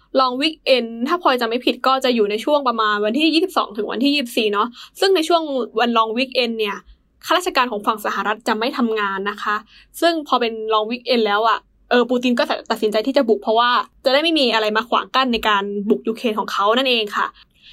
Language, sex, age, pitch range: English, female, 10-29, 220-265 Hz